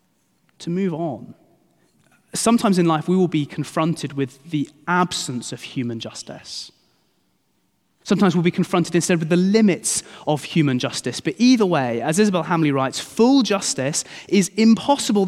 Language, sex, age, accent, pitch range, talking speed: English, male, 30-49, British, 140-210 Hz, 150 wpm